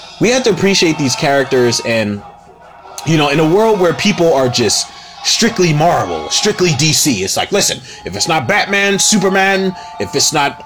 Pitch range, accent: 120-175 Hz, American